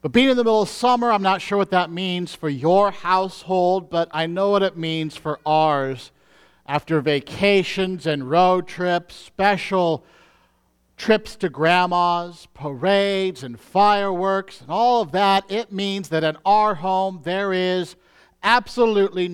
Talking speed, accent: 150 wpm, American